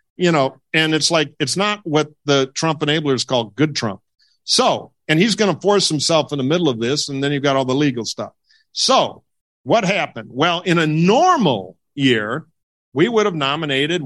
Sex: male